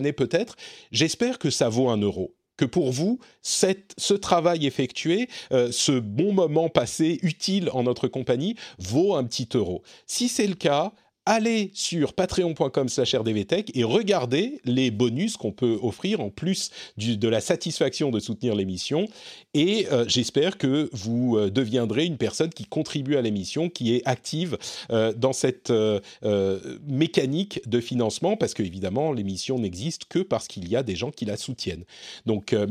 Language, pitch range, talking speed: French, 120-190 Hz, 165 wpm